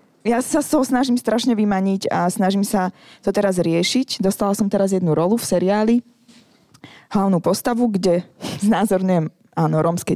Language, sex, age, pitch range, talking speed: Czech, female, 20-39, 175-220 Hz, 155 wpm